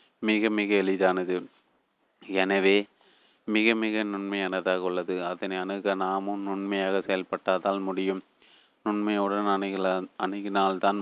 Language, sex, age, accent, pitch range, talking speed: Tamil, male, 30-49, native, 100-105 Hz, 95 wpm